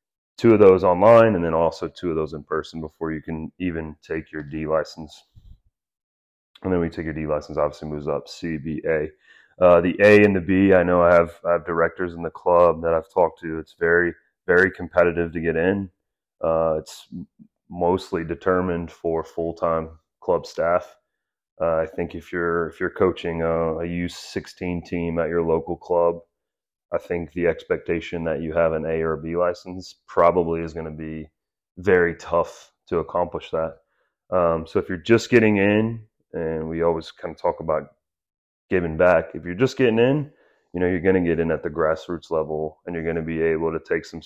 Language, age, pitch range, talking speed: English, 30-49, 80-90 Hz, 195 wpm